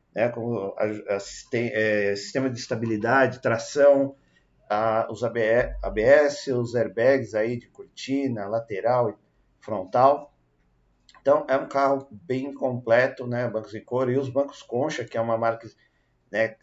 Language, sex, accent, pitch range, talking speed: Portuguese, male, Brazilian, 110-135 Hz, 150 wpm